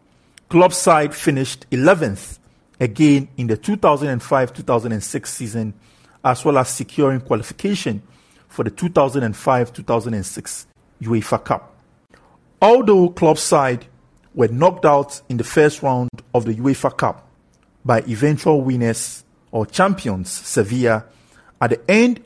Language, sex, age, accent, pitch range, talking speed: English, male, 50-69, Nigerian, 110-145 Hz, 115 wpm